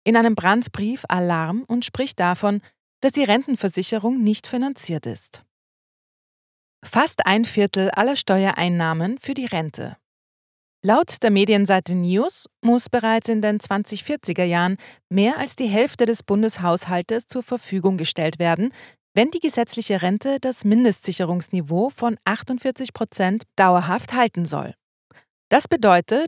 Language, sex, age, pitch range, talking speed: German, female, 30-49, 175-235 Hz, 125 wpm